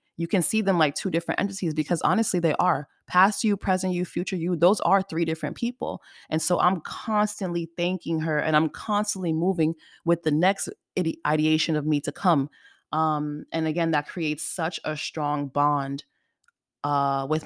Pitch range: 150-195 Hz